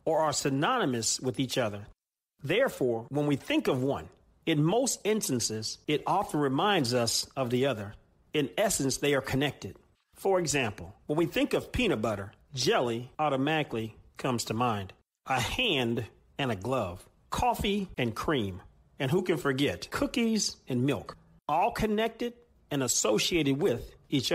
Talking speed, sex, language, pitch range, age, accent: 150 wpm, male, English, 125-170 Hz, 40-59, American